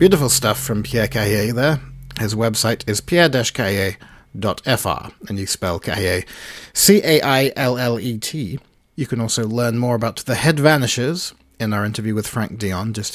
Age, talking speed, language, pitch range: 40-59, 140 wpm, English, 105-140 Hz